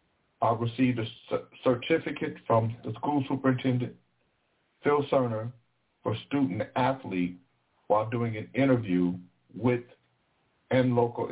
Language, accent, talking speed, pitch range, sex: English, American, 105 wpm, 95-125 Hz, male